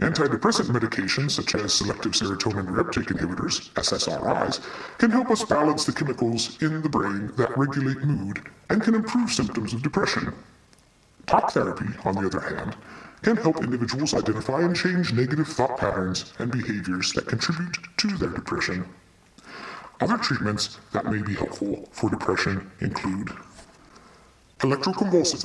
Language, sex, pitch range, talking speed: English, female, 110-165 Hz, 140 wpm